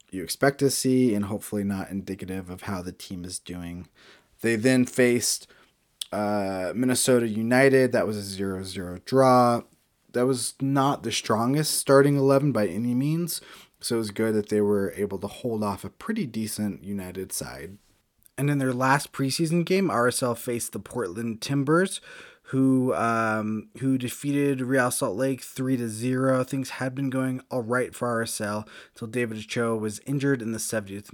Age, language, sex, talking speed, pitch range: 20-39, English, male, 170 wpm, 100-130 Hz